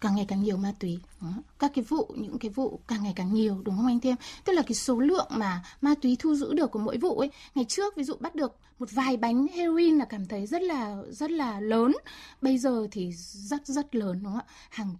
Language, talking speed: Vietnamese, 255 wpm